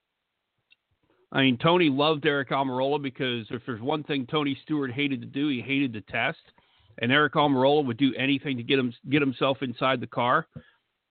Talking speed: 185 wpm